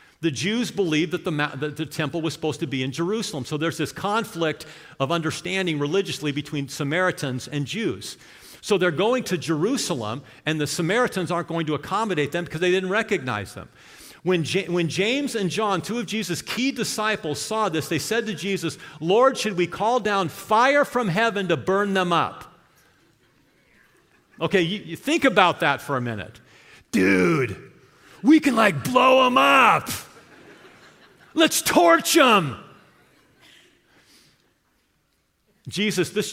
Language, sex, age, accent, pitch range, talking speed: English, male, 50-69, American, 155-220 Hz, 155 wpm